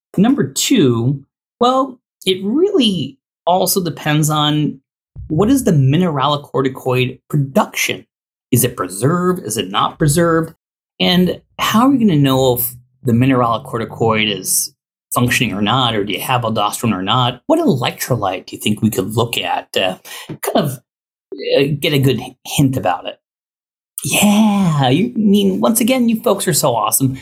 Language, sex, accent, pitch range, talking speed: English, male, American, 115-180 Hz, 150 wpm